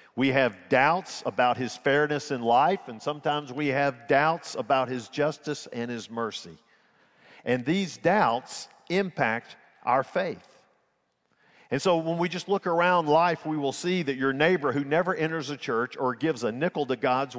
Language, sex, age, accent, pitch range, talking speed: English, male, 50-69, American, 135-170 Hz, 175 wpm